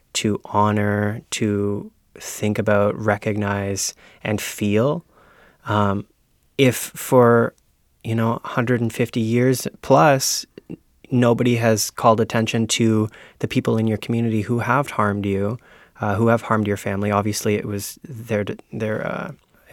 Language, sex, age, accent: English, male, 20-39, American